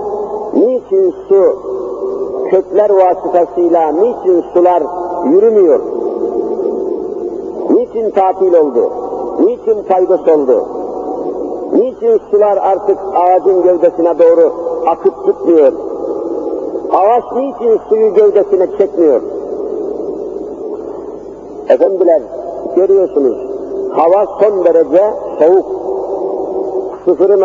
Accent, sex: native, male